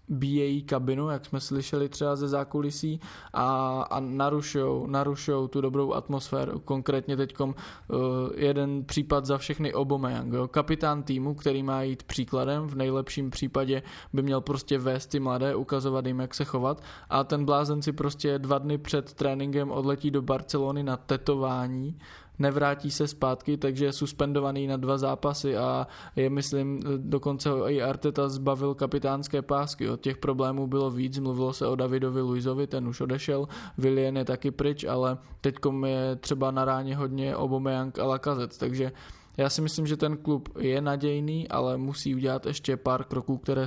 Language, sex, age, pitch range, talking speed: Czech, male, 20-39, 130-145 Hz, 160 wpm